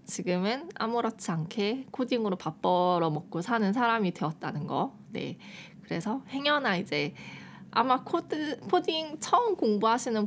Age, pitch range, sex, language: 20-39, 170-230 Hz, female, Korean